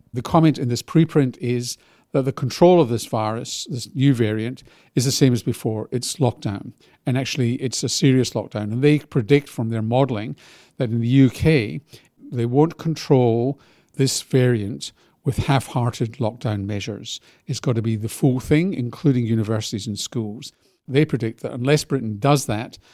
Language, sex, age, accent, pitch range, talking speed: English, male, 50-69, British, 115-135 Hz, 170 wpm